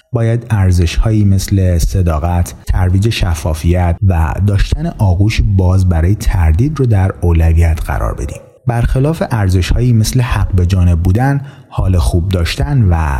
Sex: male